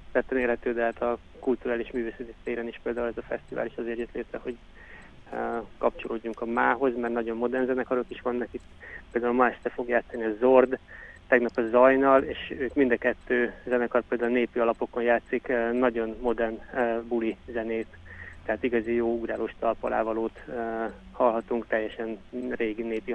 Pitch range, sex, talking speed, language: 115-125 Hz, male, 155 wpm, Hungarian